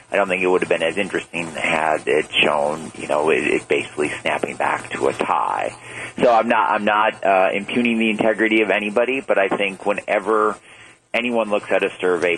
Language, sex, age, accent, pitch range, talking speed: English, male, 40-59, American, 95-110 Hz, 205 wpm